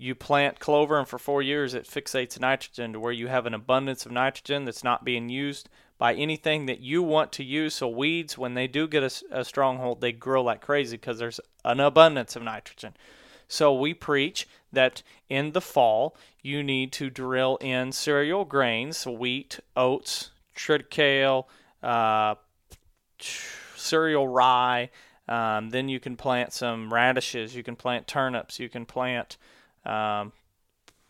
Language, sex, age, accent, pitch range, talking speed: English, male, 30-49, American, 120-140 Hz, 160 wpm